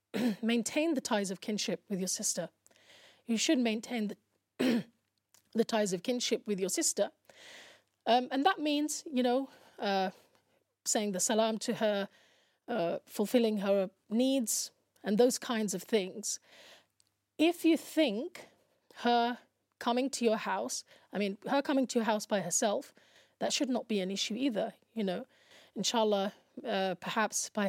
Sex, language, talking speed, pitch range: female, English, 150 wpm, 200-250 Hz